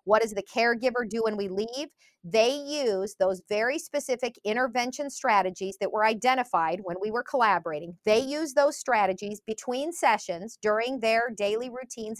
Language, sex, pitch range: English, female, 200-260 Hz